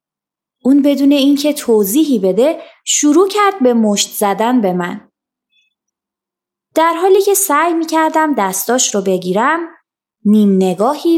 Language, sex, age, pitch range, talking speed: Persian, female, 20-39, 210-295 Hz, 120 wpm